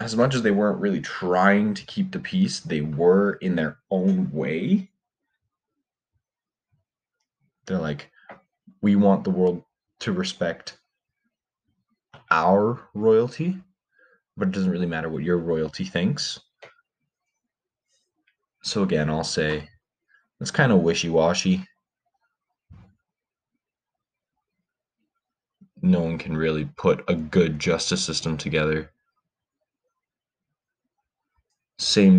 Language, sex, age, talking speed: English, male, 20-39, 105 wpm